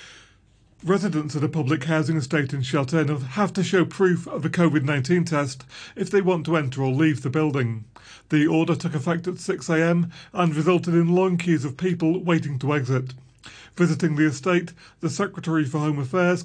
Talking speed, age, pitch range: 180 wpm, 40-59, 105-160 Hz